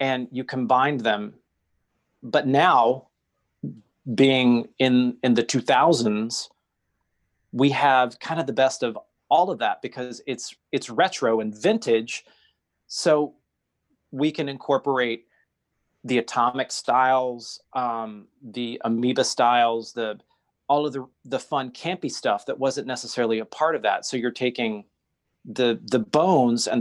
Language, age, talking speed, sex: English, 30-49, 135 wpm, male